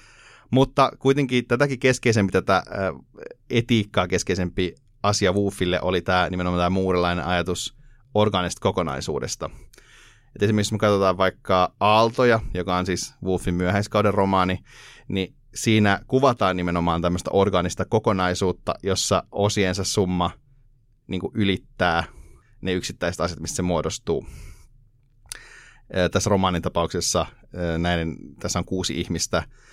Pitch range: 90-105 Hz